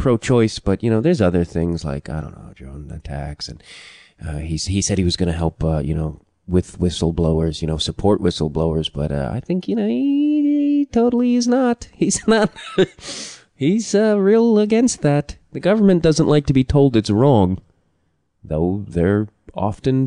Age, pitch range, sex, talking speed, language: 30-49, 90-135 Hz, male, 185 wpm, English